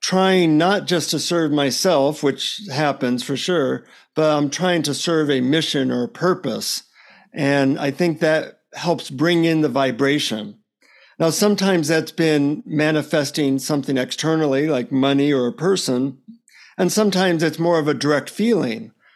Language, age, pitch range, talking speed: English, 50-69, 135-170 Hz, 150 wpm